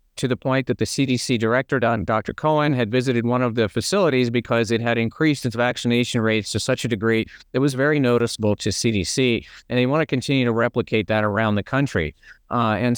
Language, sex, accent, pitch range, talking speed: English, male, American, 110-130 Hz, 210 wpm